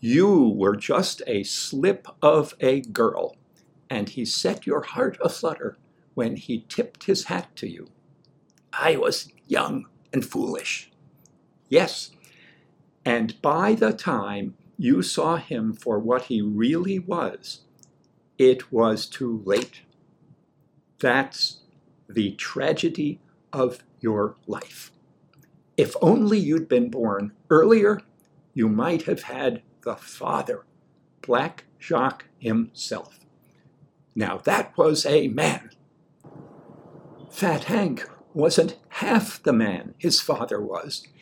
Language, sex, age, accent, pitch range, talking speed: English, male, 60-79, American, 130-200 Hz, 115 wpm